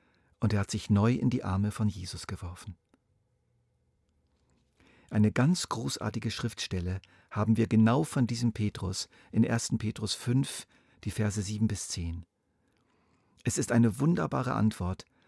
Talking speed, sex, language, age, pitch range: 140 wpm, male, German, 50-69, 90-120 Hz